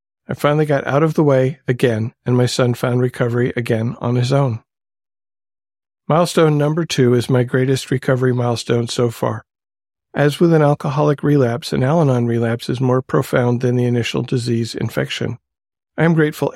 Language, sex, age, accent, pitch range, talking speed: English, male, 50-69, American, 115-145 Hz, 165 wpm